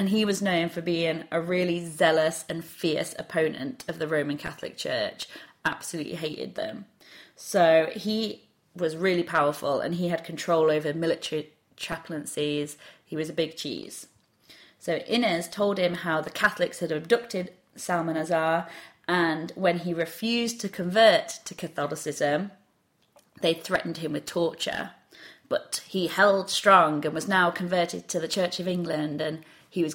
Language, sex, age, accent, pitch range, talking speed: English, female, 30-49, British, 160-195 Hz, 150 wpm